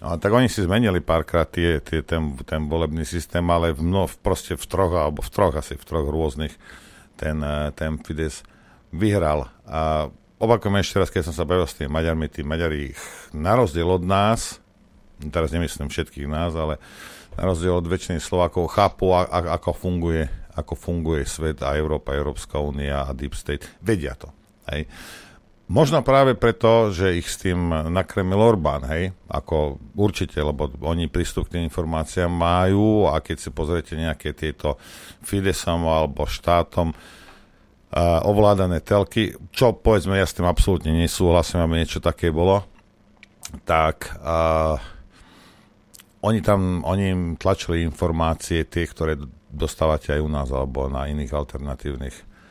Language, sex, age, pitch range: Slovak, male, 50-69, 75-95 Hz